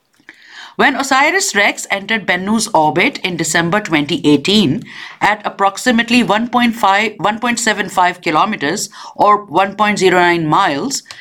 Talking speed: 80 wpm